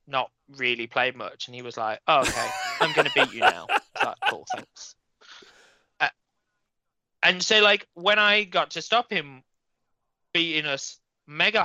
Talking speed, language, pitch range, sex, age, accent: 150 wpm, English, 135-180 Hz, male, 20-39, British